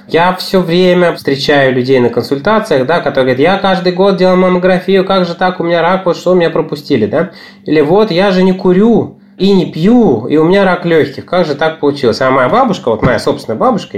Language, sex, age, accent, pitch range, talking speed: Russian, male, 20-39, native, 130-190 Hz, 220 wpm